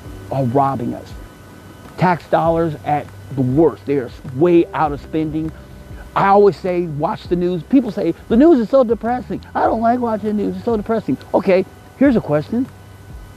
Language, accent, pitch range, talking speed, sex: English, American, 140-185 Hz, 180 wpm, male